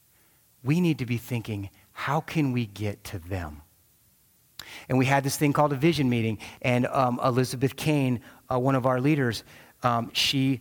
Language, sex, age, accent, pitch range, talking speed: English, male, 30-49, American, 120-145 Hz, 175 wpm